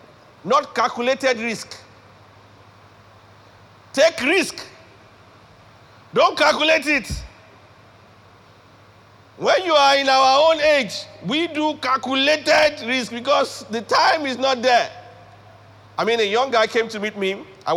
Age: 50-69